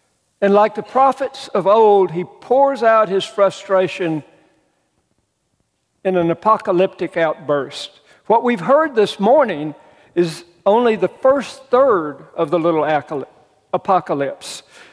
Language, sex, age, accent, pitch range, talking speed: English, male, 60-79, American, 165-215 Hz, 115 wpm